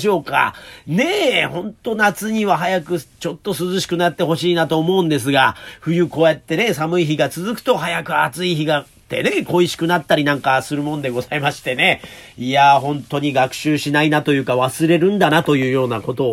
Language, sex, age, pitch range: Japanese, male, 40-59, 140-215 Hz